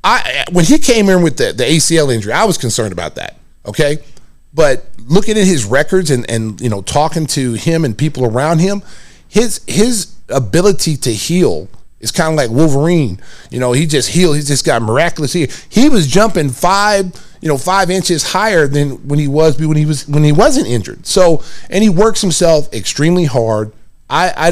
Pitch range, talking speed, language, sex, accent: 120-150 Hz, 195 wpm, English, male, American